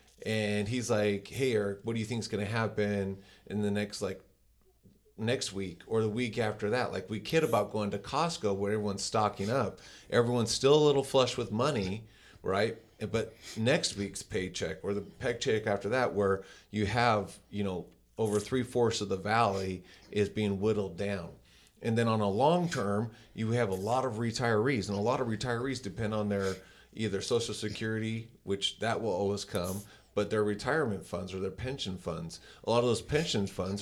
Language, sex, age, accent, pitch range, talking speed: English, male, 30-49, American, 100-115 Hz, 190 wpm